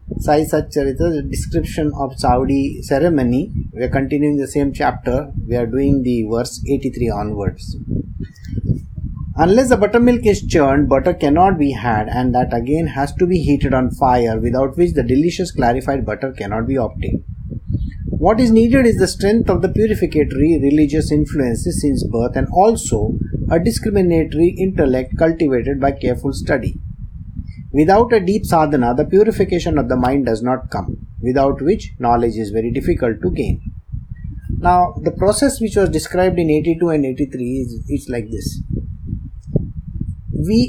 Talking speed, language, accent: 150 wpm, English, Indian